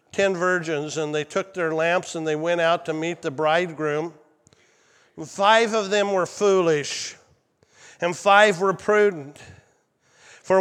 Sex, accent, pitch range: male, American, 155-205 Hz